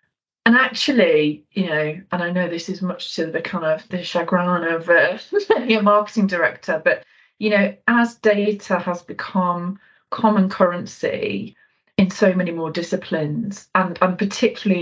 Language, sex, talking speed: English, female, 155 wpm